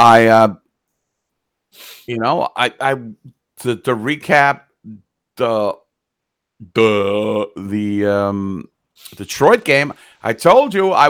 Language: English